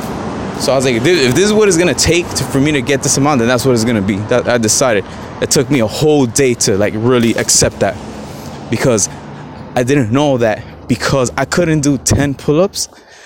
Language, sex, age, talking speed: English, male, 20-39, 220 wpm